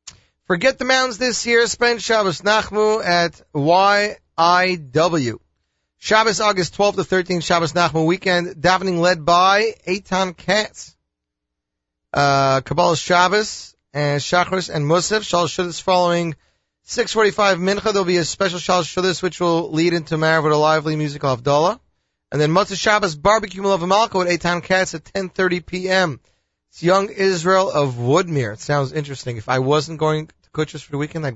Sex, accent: male, American